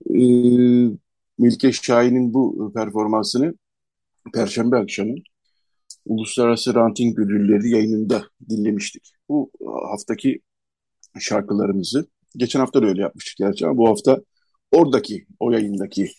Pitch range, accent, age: 100-125 Hz, native, 50-69